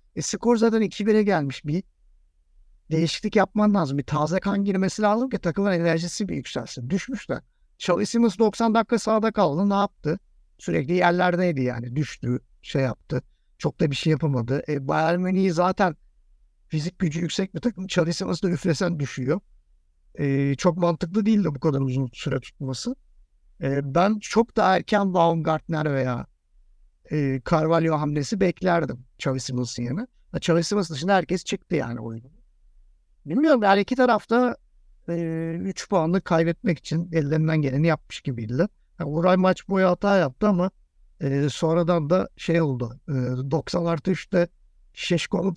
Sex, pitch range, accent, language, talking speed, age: male, 140-195 Hz, native, Turkish, 145 wpm, 60-79